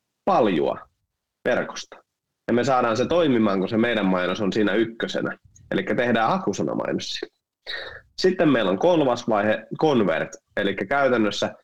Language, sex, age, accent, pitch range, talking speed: Finnish, male, 30-49, native, 95-120 Hz, 135 wpm